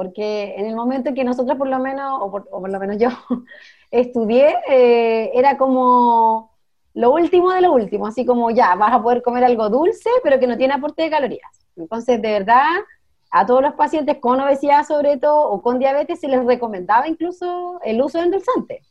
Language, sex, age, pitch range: Romanian, female, 30-49, 230-295 Hz